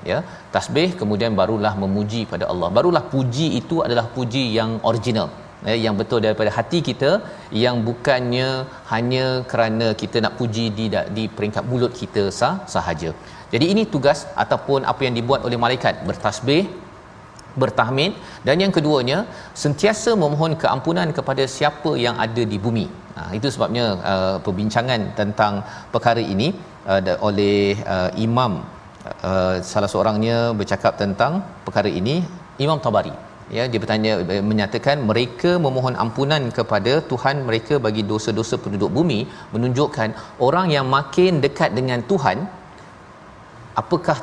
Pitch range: 110-140 Hz